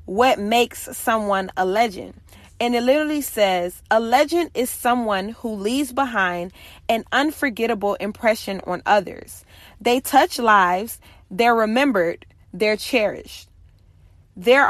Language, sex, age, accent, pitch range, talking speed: English, female, 30-49, American, 190-255 Hz, 120 wpm